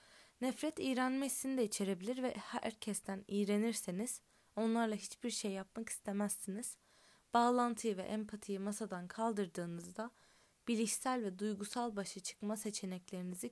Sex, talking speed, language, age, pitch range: female, 100 wpm, Turkish, 20-39, 195-230 Hz